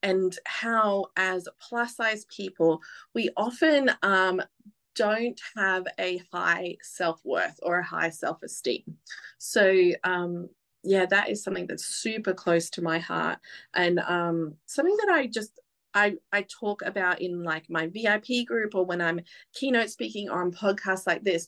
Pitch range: 175-215 Hz